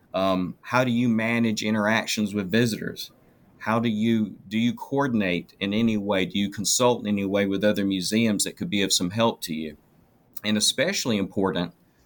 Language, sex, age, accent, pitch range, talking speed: English, male, 40-59, American, 95-115 Hz, 185 wpm